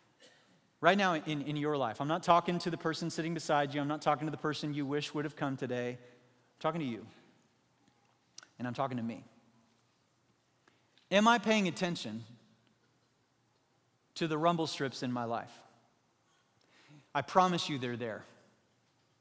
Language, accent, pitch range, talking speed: English, American, 135-165 Hz, 160 wpm